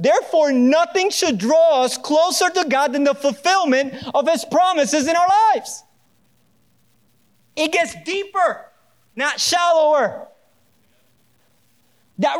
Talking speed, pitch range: 110 wpm, 240-315 Hz